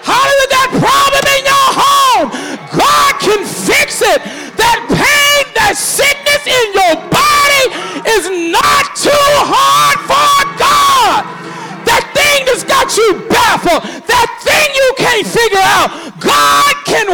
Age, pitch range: 40-59, 310-435 Hz